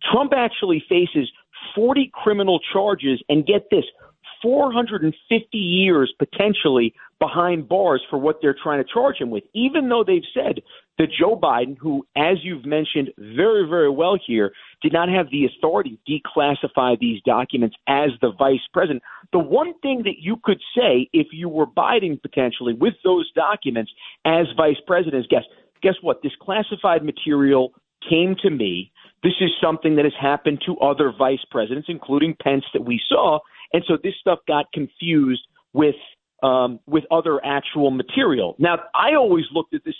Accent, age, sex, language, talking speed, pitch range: American, 50-69, male, English, 165 wpm, 140-195 Hz